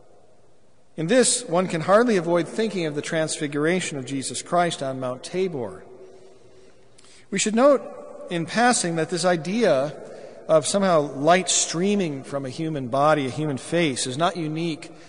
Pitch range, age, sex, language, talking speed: 135-190 Hz, 50-69, male, English, 150 wpm